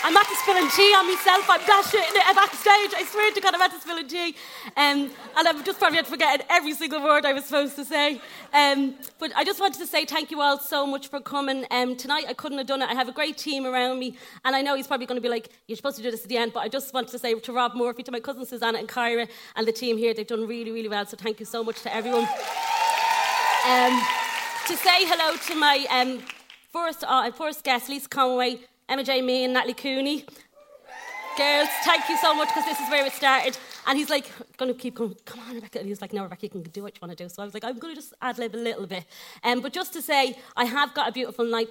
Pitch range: 230-295 Hz